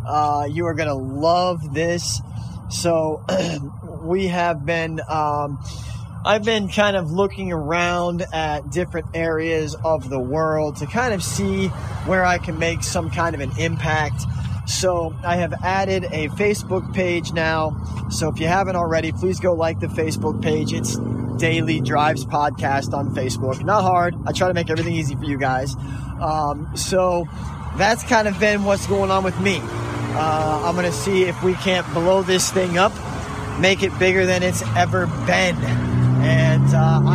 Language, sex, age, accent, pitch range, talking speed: English, male, 20-39, American, 115-185 Hz, 170 wpm